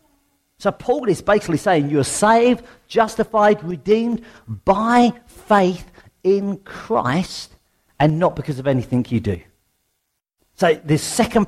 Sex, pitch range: male, 125-175 Hz